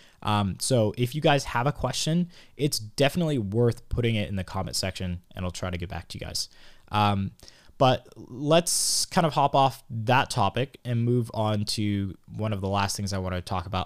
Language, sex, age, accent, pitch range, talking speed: English, male, 20-39, American, 95-115 Hz, 210 wpm